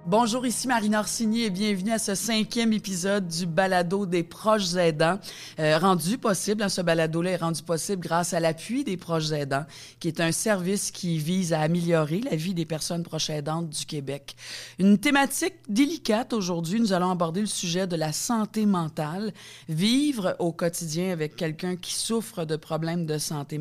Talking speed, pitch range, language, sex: 180 wpm, 160-200 Hz, French, female